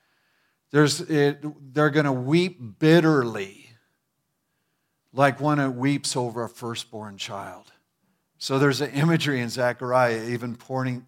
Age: 50-69